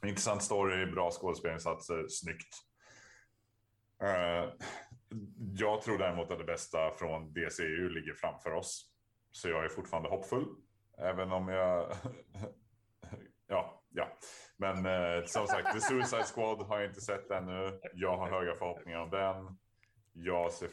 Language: Swedish